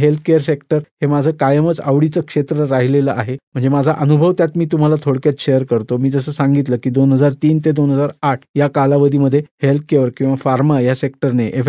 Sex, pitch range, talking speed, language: male, 140-170 Hz, 115 wpm, Marathi